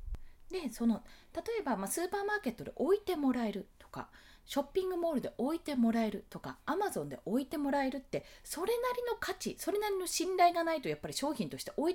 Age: 20-39